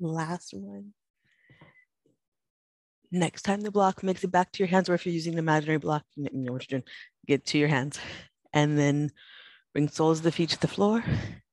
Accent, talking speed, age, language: American, 200 wpm, 30-49, English